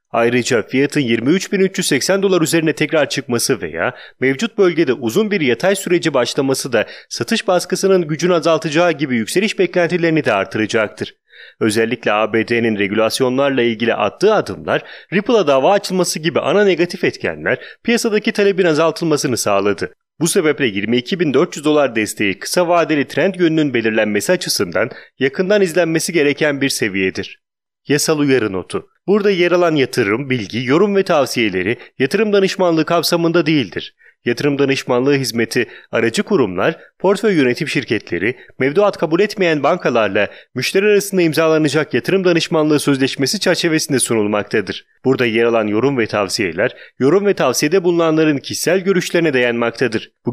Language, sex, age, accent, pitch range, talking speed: Italian, male, 30-49, Turkish, 120-175 Hz, 130 wpm